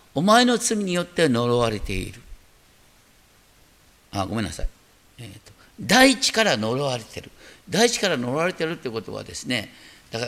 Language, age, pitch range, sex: Japanese, 50-69, 115-190 Hz, male